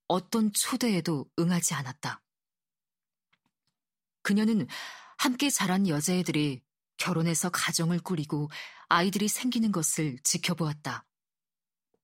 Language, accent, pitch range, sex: Korean, native, 155-200 Hz, female